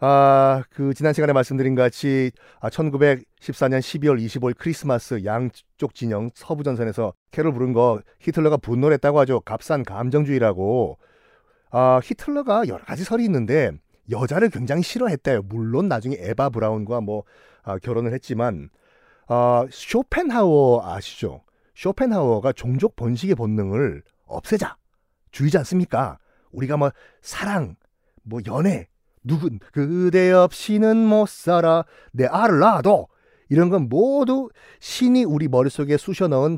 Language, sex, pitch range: Korean, male, 120-180 Hz